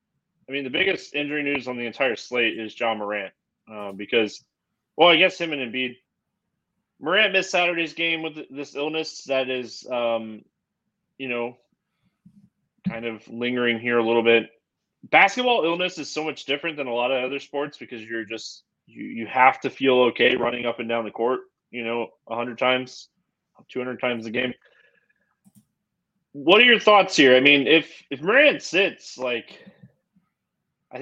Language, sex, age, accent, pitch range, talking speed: English, male, 20-39, American, 120-155 Hz, 170 wpm